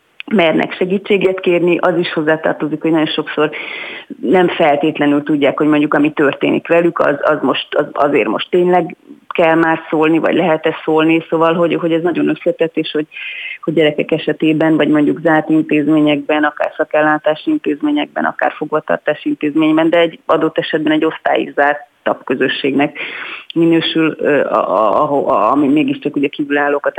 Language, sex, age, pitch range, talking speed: Hungarian, female, 30-49, 150-170 Hz, 155 wpm